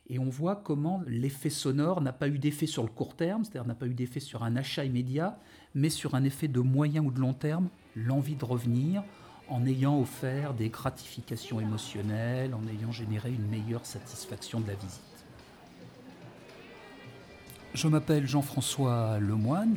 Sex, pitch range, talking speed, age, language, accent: male, 115-140 Hz, 165 wpm, 50-69, French, French